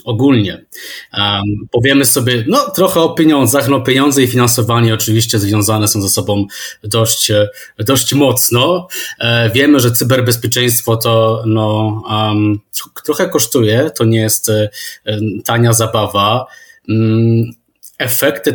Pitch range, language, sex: 110-130 Hz, Polish, male